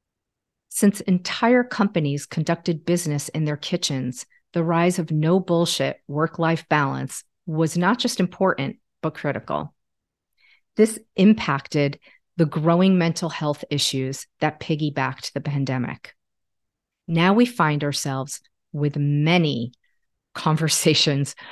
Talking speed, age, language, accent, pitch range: 105 wpm, 40-59, English, American, 140-175 Hz